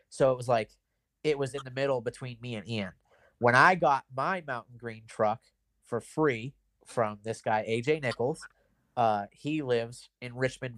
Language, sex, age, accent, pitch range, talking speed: English, male, 30-49, American, 110-130 Hz, 180 wpm